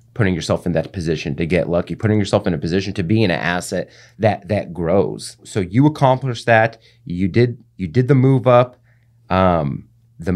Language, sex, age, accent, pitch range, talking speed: English, male, 30-49, American, 105-125 Hz, 195 wpm